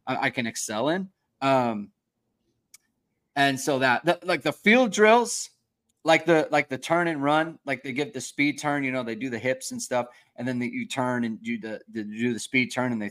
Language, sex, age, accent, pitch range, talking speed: English, male, 30-49, American, 120-160 Hz, 225 wpm